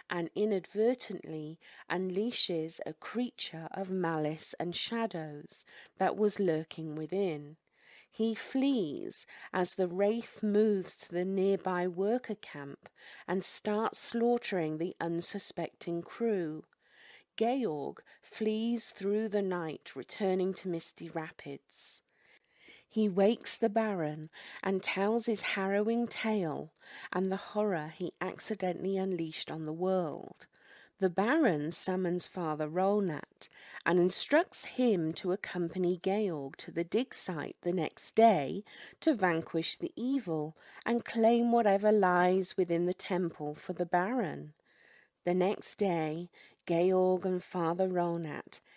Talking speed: 120 wpm